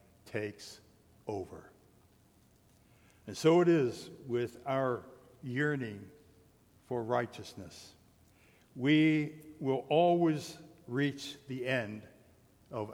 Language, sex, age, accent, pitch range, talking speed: English, male, 60-79, American, 115-140 Hz, 85 wpm